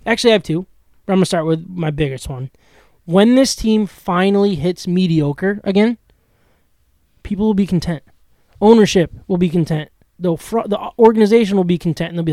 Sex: male